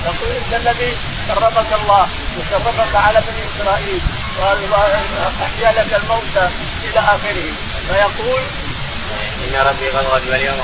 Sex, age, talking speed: male, 30-49, 95 wpm